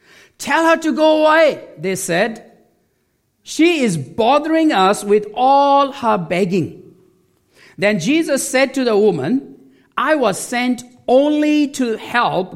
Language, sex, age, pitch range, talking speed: English, male, 50-69, 185-265 Hz, 130 wpm